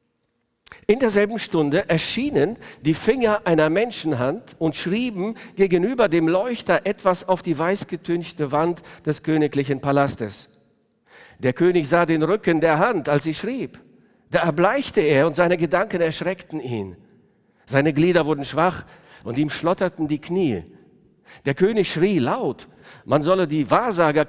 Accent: German